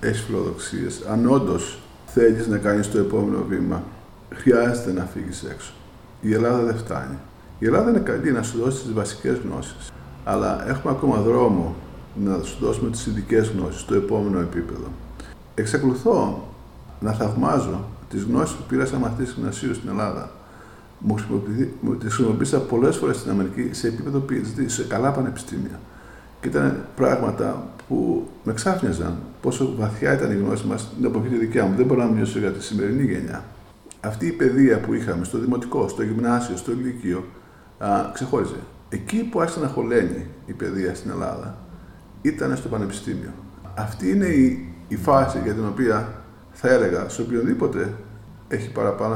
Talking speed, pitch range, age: 155 wpm, 95-120 Hz, 50-69